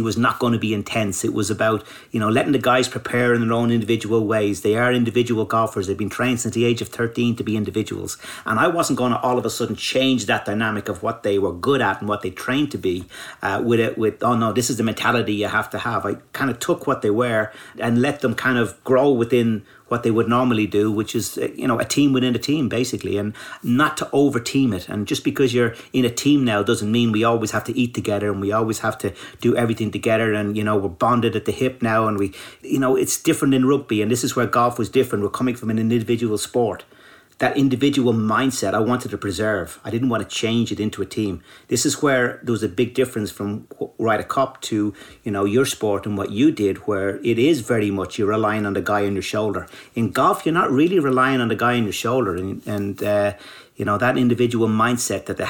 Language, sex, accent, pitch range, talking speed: English, male, Irish, 105-125 Hz, 250 wpm